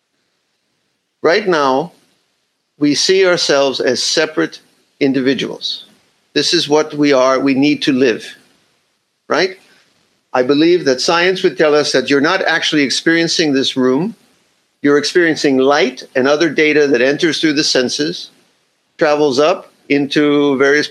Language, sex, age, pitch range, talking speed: English, male, 50-69, 140-190 Hz, 135 wpm